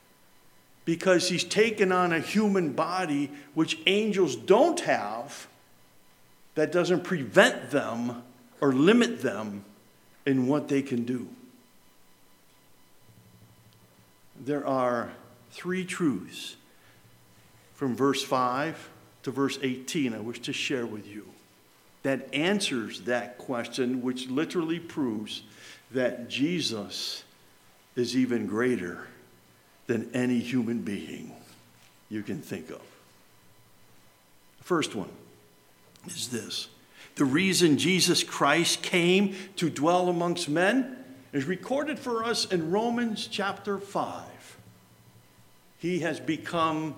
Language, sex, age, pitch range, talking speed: English, male, 50-69, 125-180 Hz, 105 wpm